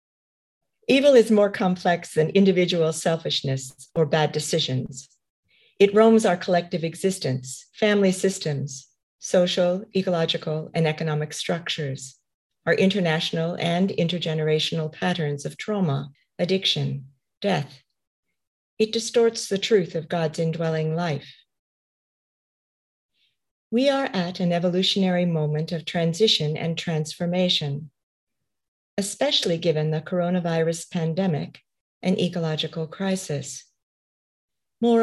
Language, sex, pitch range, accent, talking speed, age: English, female, 150-195 Hz, American, 100 wpm, 50-69